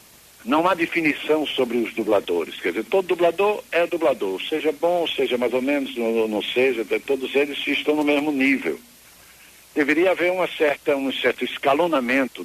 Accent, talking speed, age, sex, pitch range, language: Brazilian, 155 wpm, 60-79, male, 125-180 Hz, Portuguese